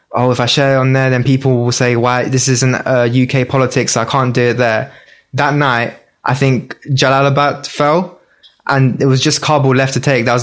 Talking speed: 225 wpm